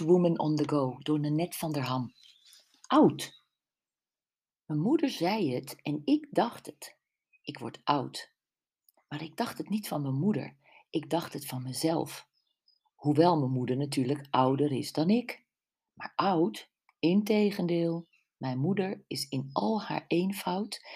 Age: 50-69